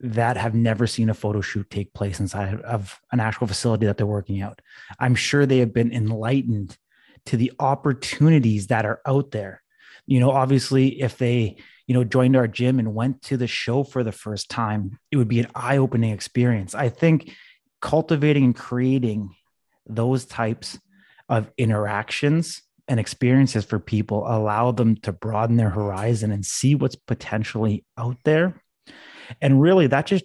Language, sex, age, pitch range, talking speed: English, male, 30-49, 105-125 Hz, 170 wpm